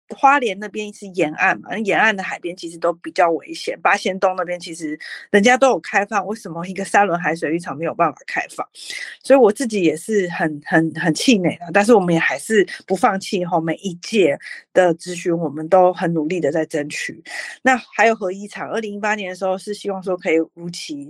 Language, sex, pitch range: Chinese, female, 165-215 Hz